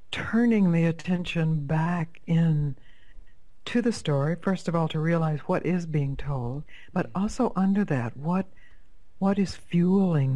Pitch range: 140-170 Hz